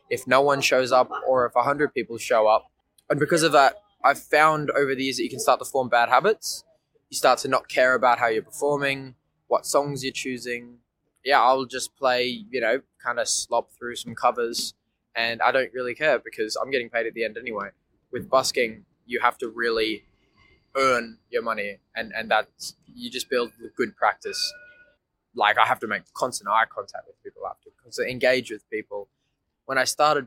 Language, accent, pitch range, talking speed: English, Australian, 120-160 Hz, 205 wpm